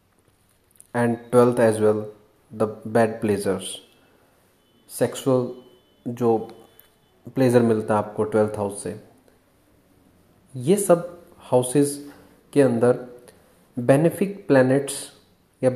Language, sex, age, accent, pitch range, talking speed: Hindi, male, 30-49, native, 115-160 Hz, 90 wpm